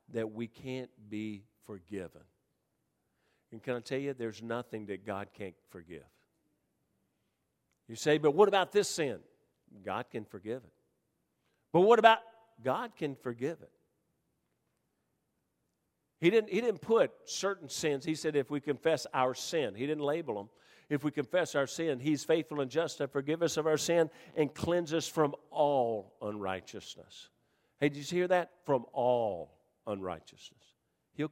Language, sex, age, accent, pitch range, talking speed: English, male, 50-69, American, 120-150 Hz, 155 wpm